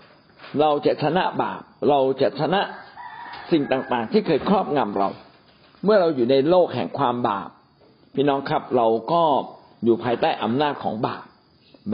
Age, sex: 60-79, male